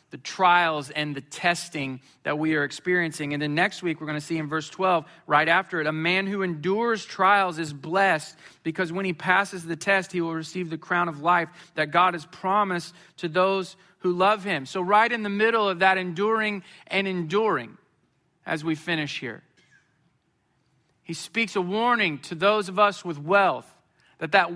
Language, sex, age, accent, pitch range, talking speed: English, male, 40-59, American, 150-190 Hz, 190 wpm